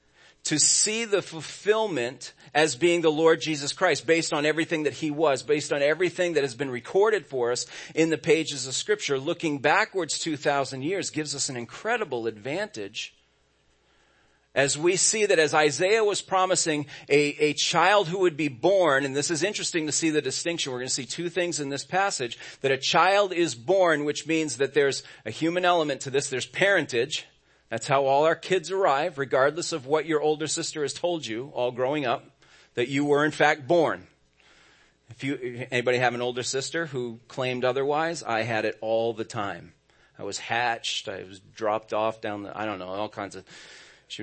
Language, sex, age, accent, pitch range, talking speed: English, male, 40-59, American, 125-165 Hz, 195 wpm